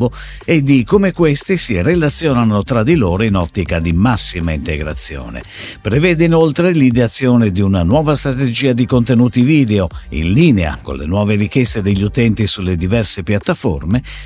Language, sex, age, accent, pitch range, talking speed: Italian, male, 50-69, native, 90-145 Hz, 145 wpm